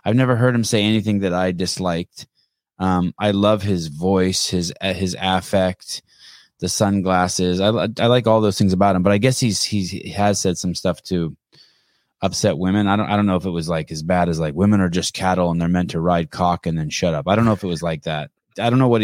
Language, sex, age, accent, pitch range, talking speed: English, male, 20-39, American, 95-115 Hz, 250 wpm